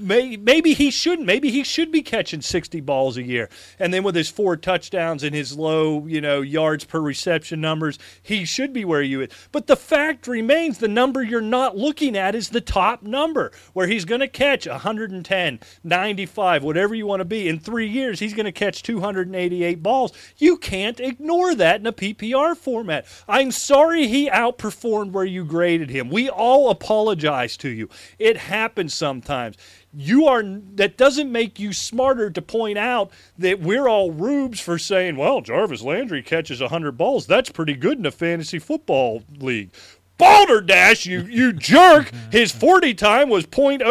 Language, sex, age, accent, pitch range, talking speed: English, male, 30-49, American, 175-265 Hz, 180 wpm